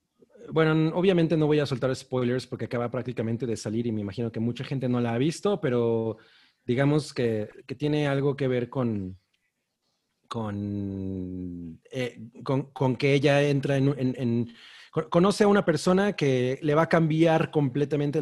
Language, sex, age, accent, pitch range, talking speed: Spanish, male, 30-49, Mexican, 120-150 Hz, 170 wpm